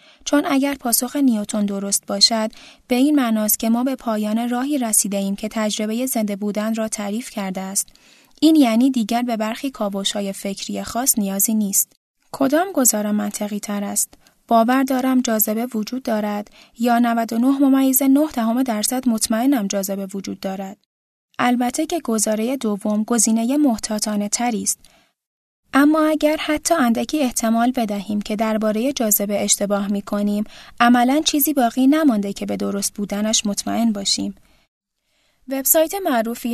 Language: Persian